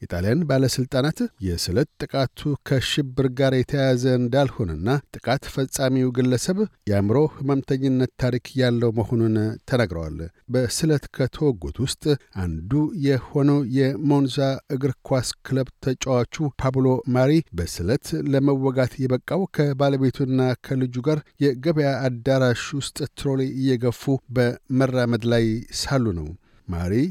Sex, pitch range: male, 120-140 Hz